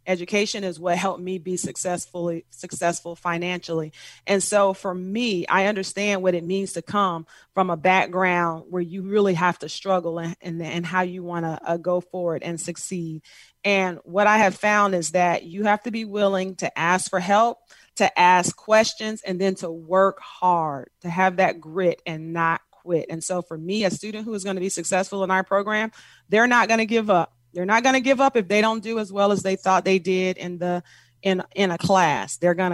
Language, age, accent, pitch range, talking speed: English, 30-49, American, 170-200 Hz, 215 wpm